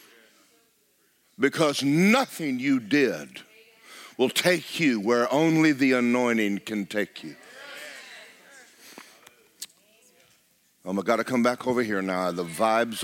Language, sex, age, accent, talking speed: English, male, 50-69, American, 110 wpm